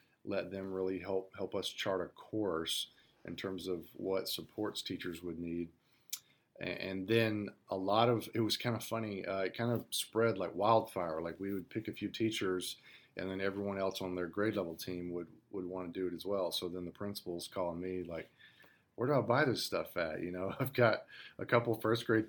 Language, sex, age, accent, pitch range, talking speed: English, male, 40-59, American, 90-105 Hz, 220 wpm